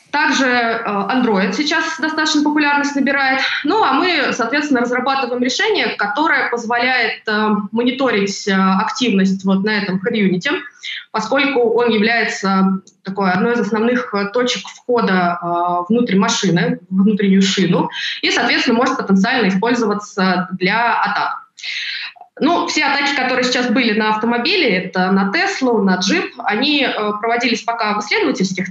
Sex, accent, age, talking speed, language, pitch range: female, native, 20-39, 130 wpm, Russian, 190-255 Hz